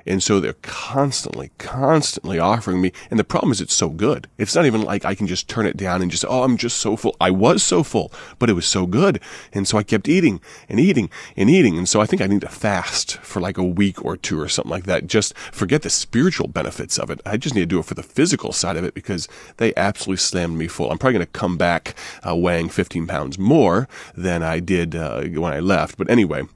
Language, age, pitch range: English, 30-49, 85-100 Hz